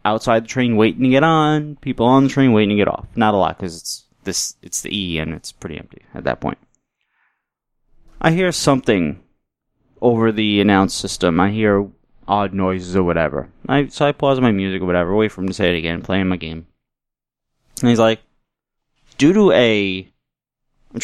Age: 30-49